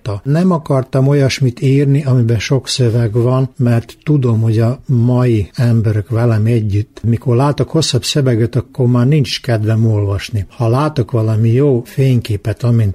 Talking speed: 145 wpm